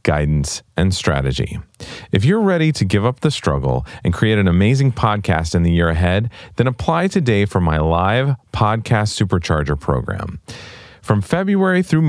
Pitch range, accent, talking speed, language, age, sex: 80-115 Hz, American, 160 wpm, English, 40-59, male